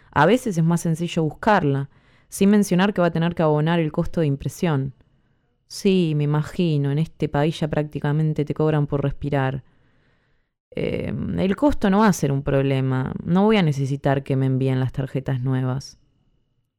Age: 20-39